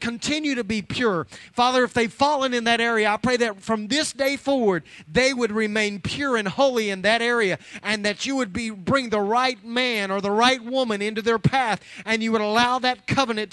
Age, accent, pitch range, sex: 30-49, American, 190-245 Hz, male